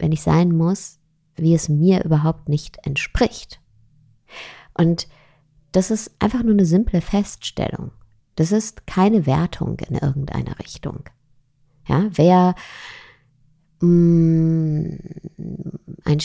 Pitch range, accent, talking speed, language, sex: 140-180 Hz, German, 100 wpm, German, female